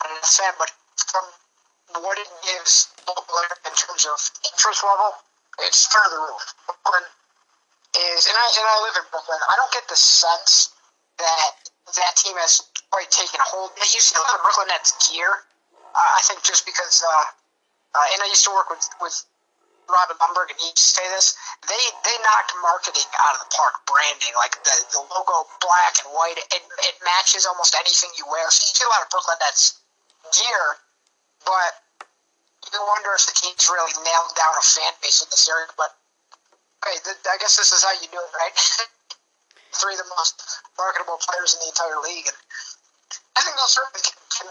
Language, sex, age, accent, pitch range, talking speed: English, male, 30-49, American, 170-200 Hz, 195 wpm